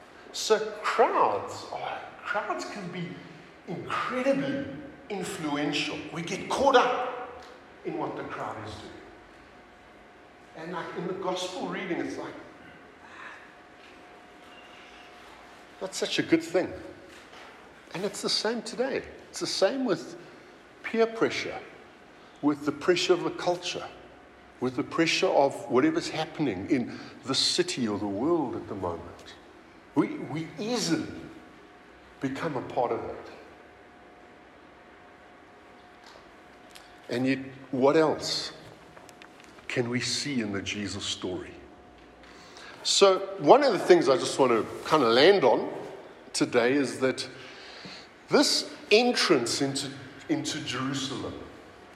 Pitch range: 140-210 Hz